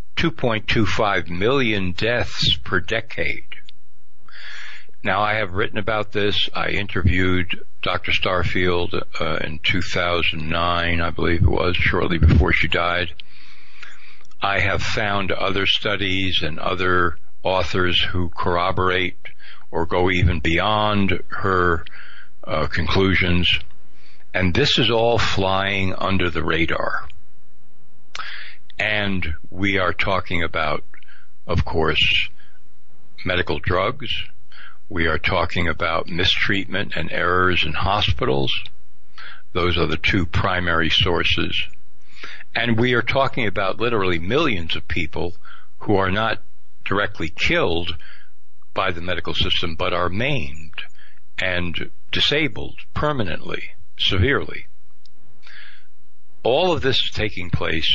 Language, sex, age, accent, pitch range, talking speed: English, male, 60-79, American, 85-100 Hz, 110 wpm